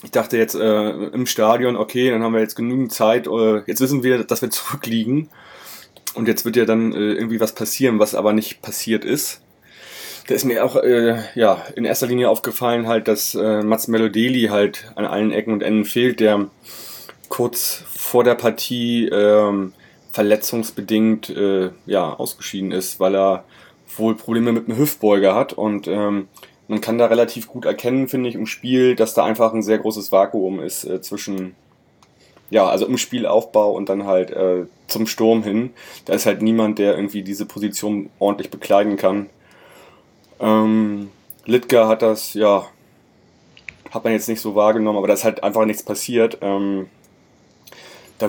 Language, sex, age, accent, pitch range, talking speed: German, male, 20-39, German, 105-115 Hz, 175 wpm